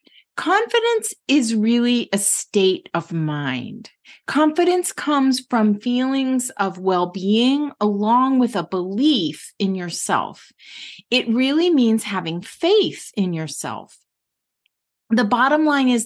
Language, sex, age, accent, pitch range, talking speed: English, female, 40-59, American, 190-275 Hz, 115 wpm